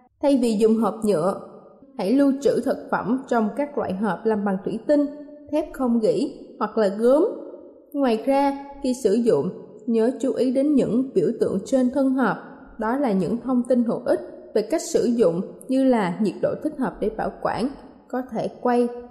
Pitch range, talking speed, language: 220-275 Hz, 195 wpm, Vietnamese